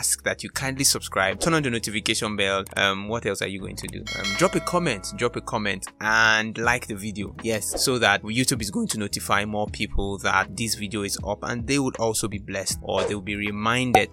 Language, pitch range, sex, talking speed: English, 105-120 Hz, male, 225 wpm